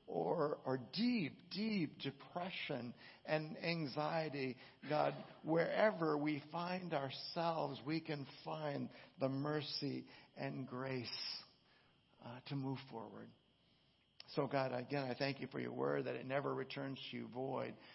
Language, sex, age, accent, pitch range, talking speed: English, male, 60-79, American, 125-150 Hz, 130 wpm